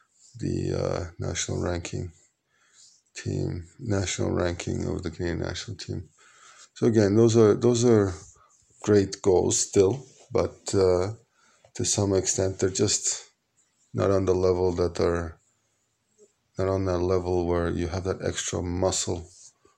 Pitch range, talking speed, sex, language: 90-105 Hz, 135 wpm, male, Hebrew